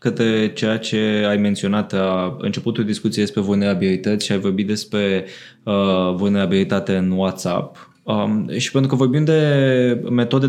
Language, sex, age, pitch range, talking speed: Romanian, male, 20-39, 100-120 Hz, 135 wpm